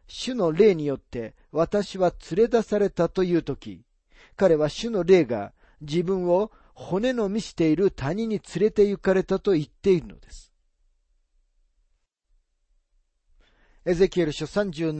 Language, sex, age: Japanese, male, 40-59